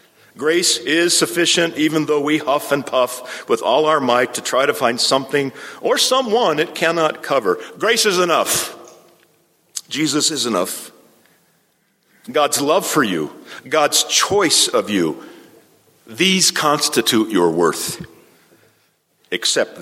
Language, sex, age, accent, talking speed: English, male, 50-69, American, 125 wpm